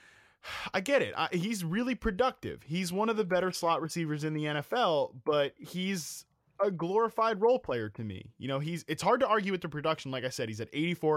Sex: male